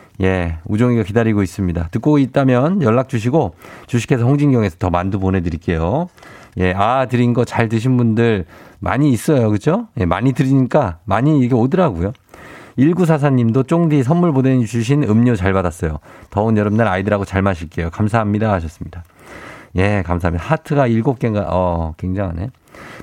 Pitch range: 95-135 Hz